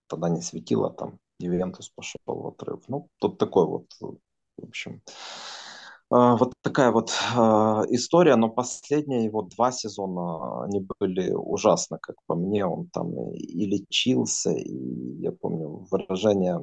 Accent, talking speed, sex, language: native, 135 wpm, male, Russian